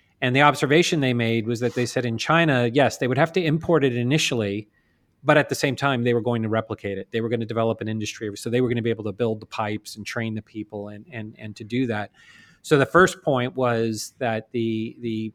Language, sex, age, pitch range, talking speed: English, male, 40-59, 115-145 Hz, 250 wpm